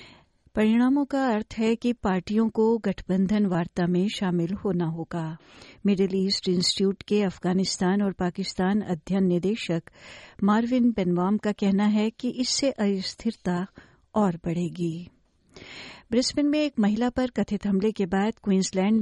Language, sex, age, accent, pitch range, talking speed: Hindi, female, 60-79, native, 185-220 Hz, 135 wpm